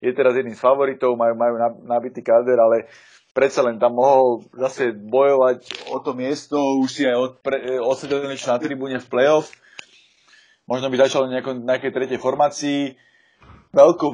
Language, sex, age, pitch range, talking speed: Slovak, male, 30-49, 120-130 Hz, 155 wpm